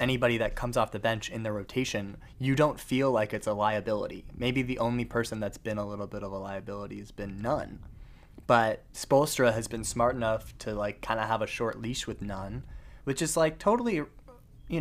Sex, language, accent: male, English, American